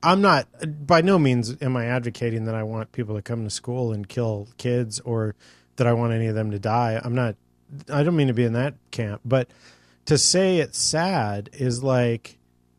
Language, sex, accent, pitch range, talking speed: English, male, American, 115-140 Hz, 210 wpm